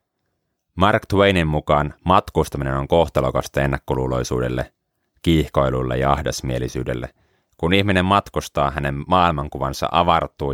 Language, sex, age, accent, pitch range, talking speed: Finnish, male, 30-49, native, 70-90 Hz, 90 wpm